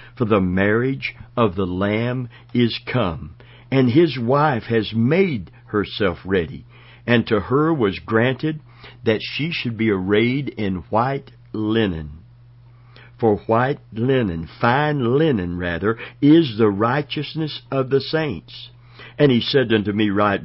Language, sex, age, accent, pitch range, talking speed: English, male, 60-79, American, 100-120 Hz, 135 wpm